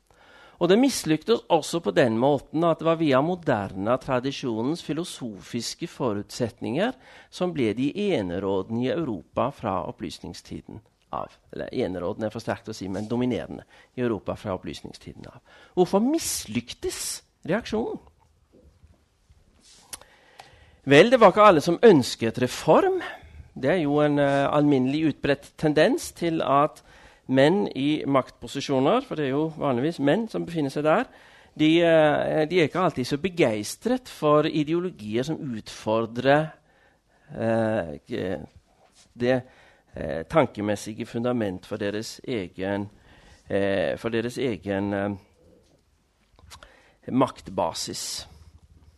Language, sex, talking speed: Danish, male, 115 wpm